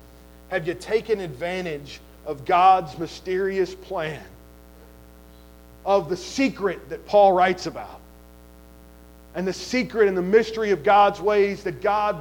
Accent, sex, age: American, male, 40-59